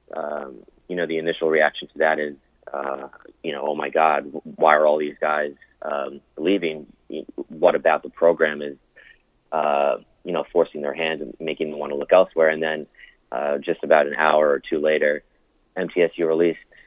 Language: English